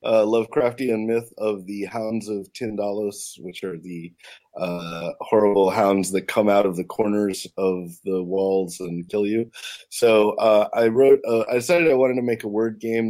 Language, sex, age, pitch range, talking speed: English, male, 30-49, 95-115 Hz, 185 wpm